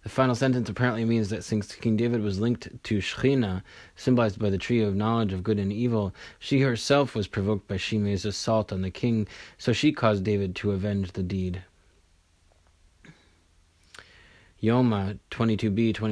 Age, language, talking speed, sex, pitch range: 20-39, English, 160 wpm, male, 100-125 Hz